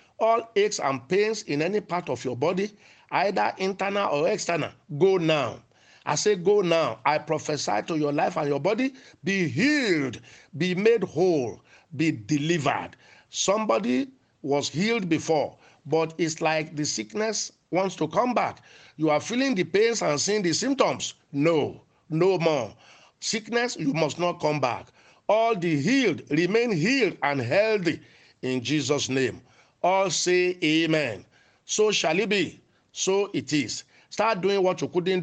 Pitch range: 145-200 Hz